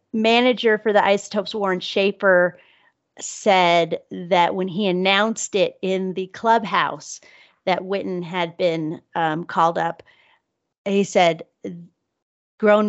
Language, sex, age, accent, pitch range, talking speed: English, female, 40-59, American, 185-230 Hz, 115 wpm